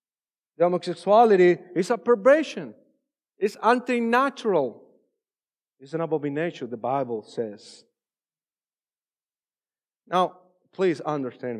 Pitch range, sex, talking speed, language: 160-220 Hz, male, 85 wpm, English